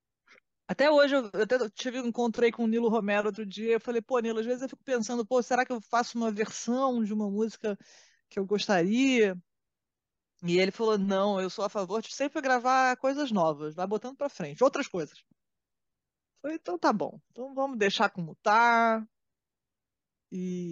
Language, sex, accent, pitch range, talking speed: Portuguese, female, Brazilian, 205-275 Hz, 180 wpm